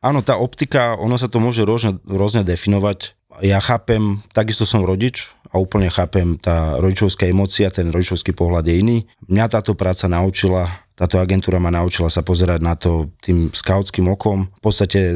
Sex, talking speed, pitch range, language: male, 165 wpm, 90-105 Hz, Slovak